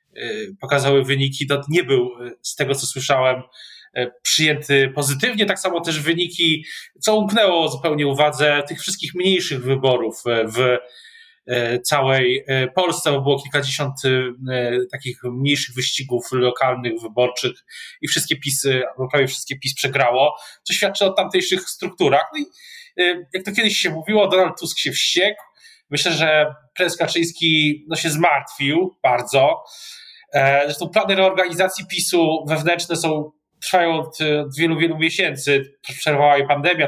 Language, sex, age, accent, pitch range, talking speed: Polish, male, 20-39, native, 135-180 Hz, 130 wpm